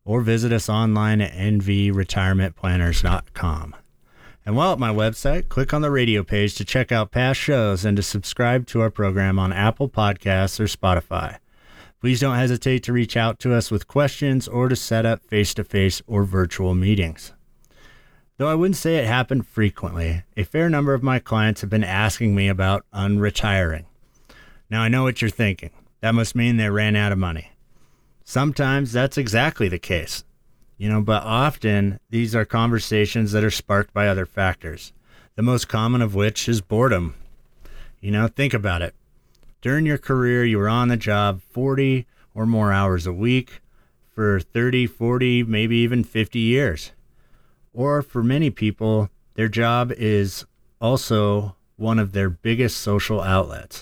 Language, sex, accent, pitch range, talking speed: English, male, American, 100-120 Hz, 165 wpm